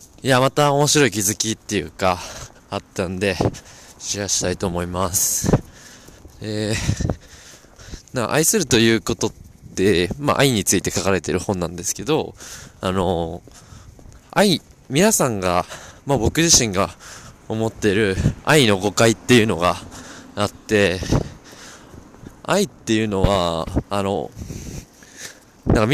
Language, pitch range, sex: Japanese, 95-130 Hz, male